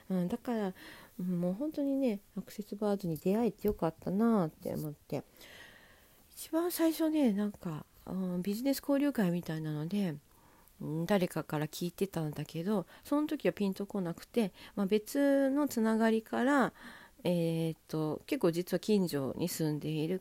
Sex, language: female, Japanese